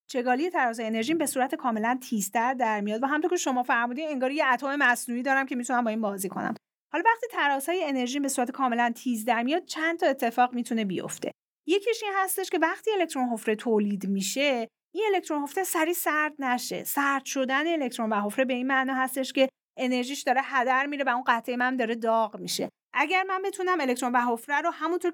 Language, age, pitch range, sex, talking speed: Persian, 30-49, 230-310 Hz, female, 200 wpm